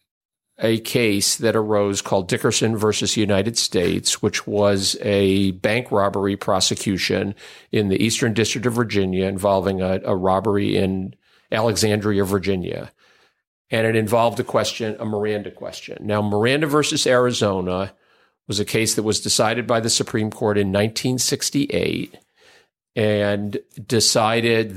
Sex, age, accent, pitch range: male, 50-69, American, 100-120 Hz